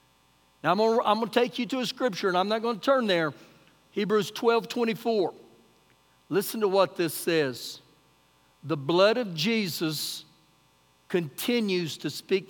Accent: American